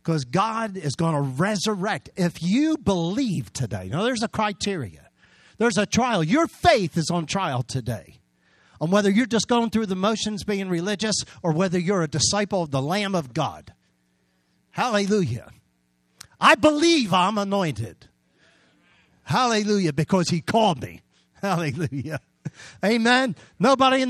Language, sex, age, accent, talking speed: English, male, 50-69, American, 145 wpm